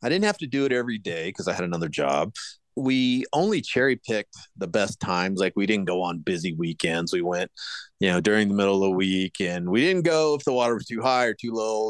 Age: 30-49